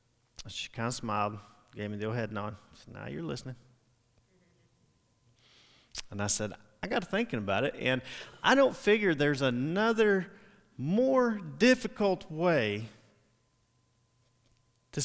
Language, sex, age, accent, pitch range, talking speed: English, male, 40-59, American, 105-125 Hz, 130 wpm